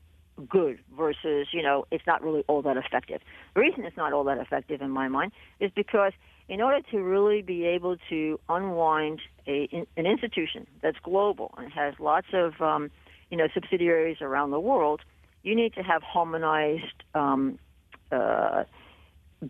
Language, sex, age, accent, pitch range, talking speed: English, female, 60-79, American, 145-180 Hz, 165 wpm